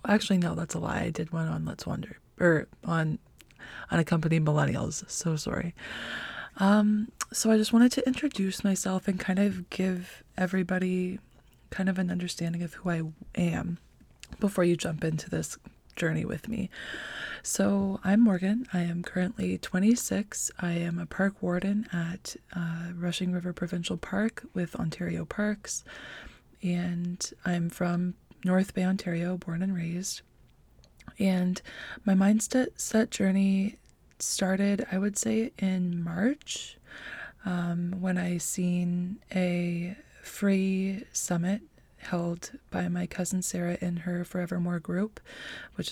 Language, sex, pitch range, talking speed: English, female, 175-195 Hz, 135 wpm